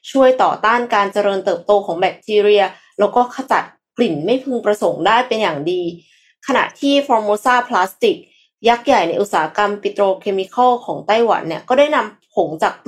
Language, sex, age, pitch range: Thai, female, 20-39, 185-240 Hz